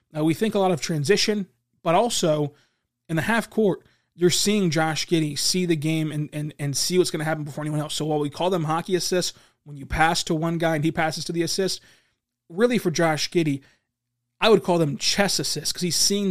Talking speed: 230 wpm